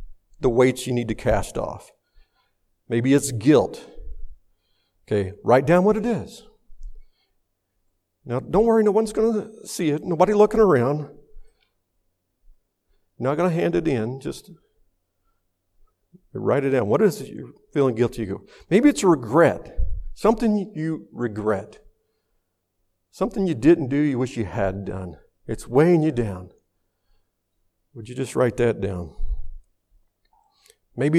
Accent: American